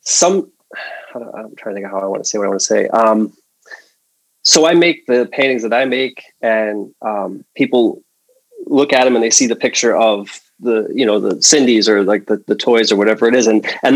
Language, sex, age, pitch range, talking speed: English, male, 30-49, 110-140 Hz, 230 wpm